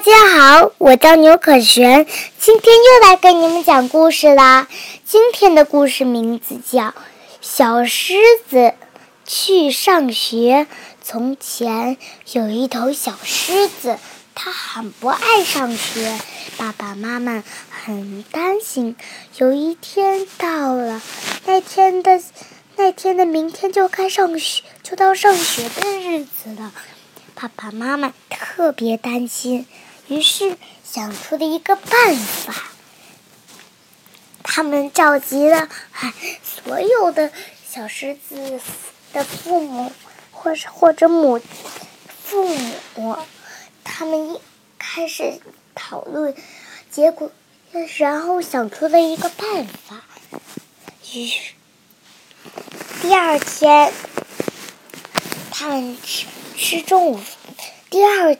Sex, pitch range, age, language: male, 250-365 Hz, 20-39, Chinese